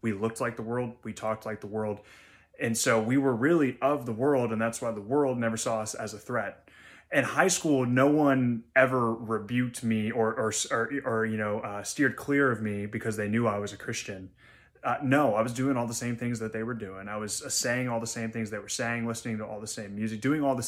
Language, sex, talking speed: English, male, 250 wpm